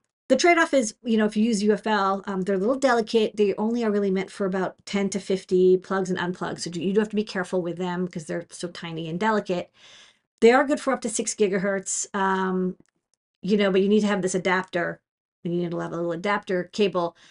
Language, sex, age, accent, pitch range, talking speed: English, female, 40-59, American, 185-225 Hz, 240 wpm